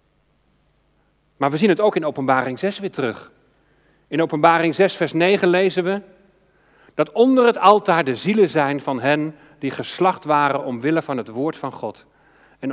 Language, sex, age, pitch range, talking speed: Dutch, male, 40-59, 140-190 Hz, 170 wpm